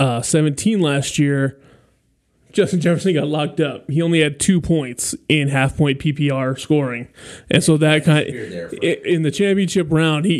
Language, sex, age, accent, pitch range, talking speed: English, male, 20-39, American, 140-170 Hz, 165 wpm